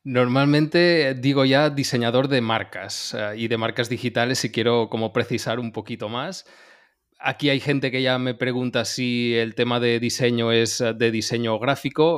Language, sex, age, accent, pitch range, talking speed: Spanish, male, 20-39, Spanish, 115-130 Hz, 165 wpm